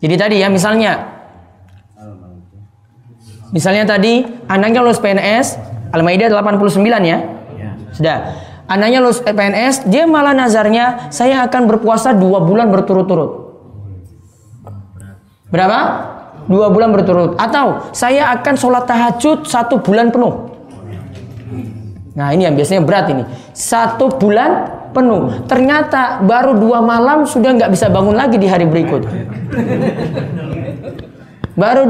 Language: Indonesian